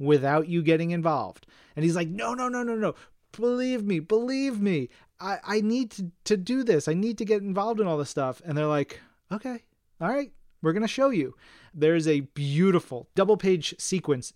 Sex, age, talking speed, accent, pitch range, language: male, 30-49, 205 wpm, American, 145-185 Hz, English